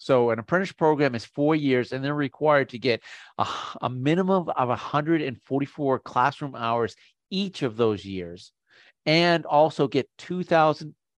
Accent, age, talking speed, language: American, 40-59, 145 wpm, English